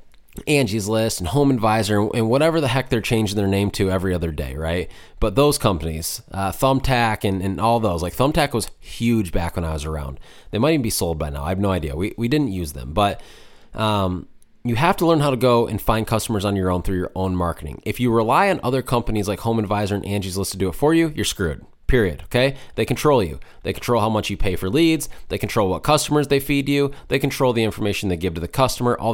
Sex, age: male, 20-39